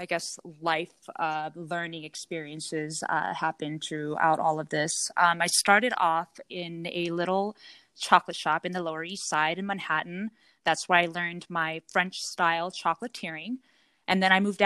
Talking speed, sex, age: 160 wpm, female, 20-39